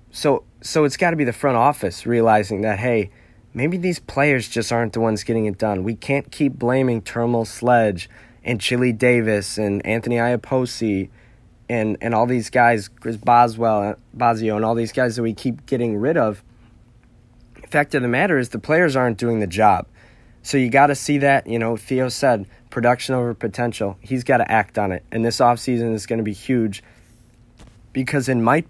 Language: English